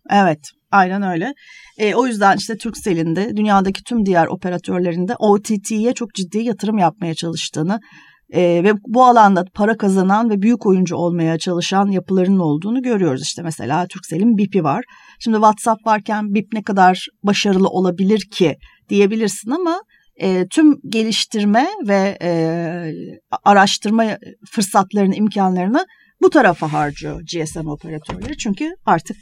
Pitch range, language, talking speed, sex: 175-225 Hz, Turkish, 130 wpm, female